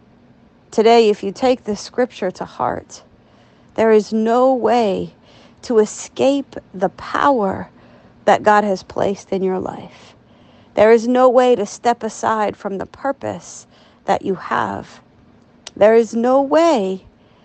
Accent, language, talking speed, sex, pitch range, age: American, English, 140 wpm, female, 200-240 Hz, 40-59